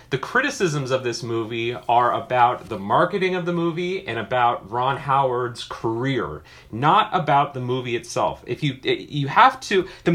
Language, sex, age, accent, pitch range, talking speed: English, male, 30-49, American, 130-180 Hz, 165 wpm